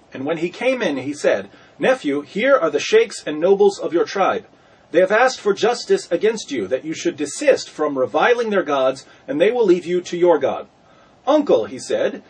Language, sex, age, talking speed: English, male, 30-49, 210 wpm